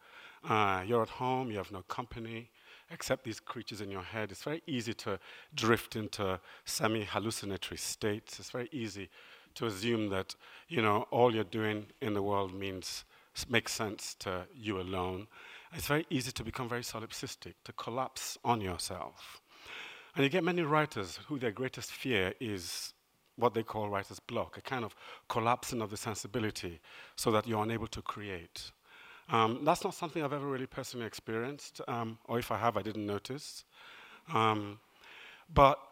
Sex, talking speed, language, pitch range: male, 165 wpm, English, 100-130 Hz